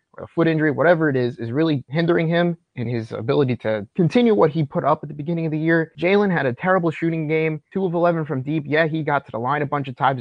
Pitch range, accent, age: 125-165 Hz, American, 30-49